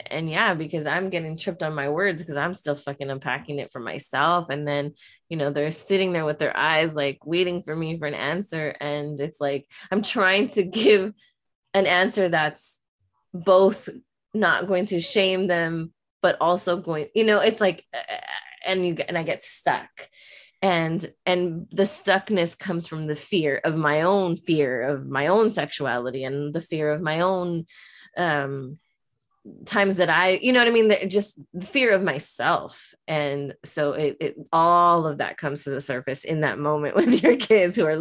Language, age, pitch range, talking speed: English, 20-39, 150-195 Hz, 185 wpm